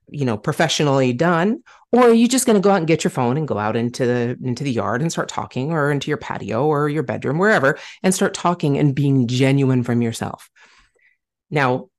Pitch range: 125-160 Hz